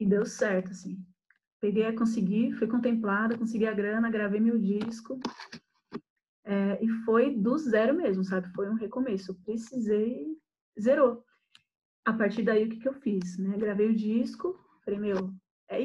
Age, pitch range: 20-39, 210-255 Hz